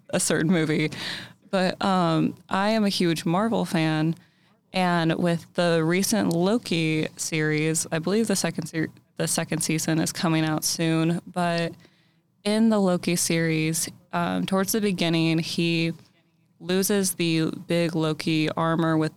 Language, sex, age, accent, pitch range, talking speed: English, female, 20-39, American, 155-180 Hz, 140 wpm